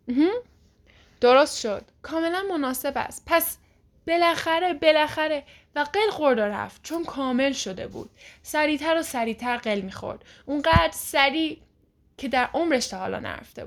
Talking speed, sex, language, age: 125 wpm, female, Persian, 10-29